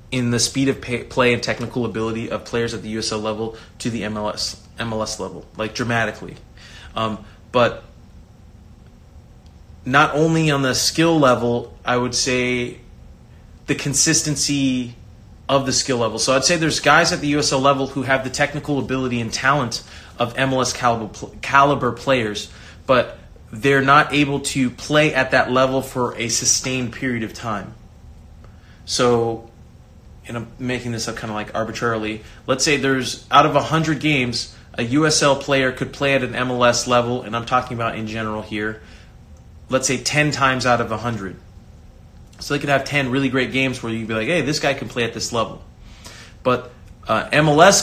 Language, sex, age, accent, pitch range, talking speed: English, male, 30-49, American, 110-135 Hz, 175 wpm